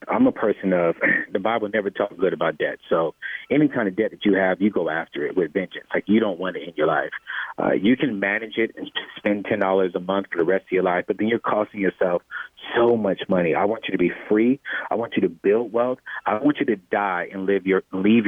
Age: 40-59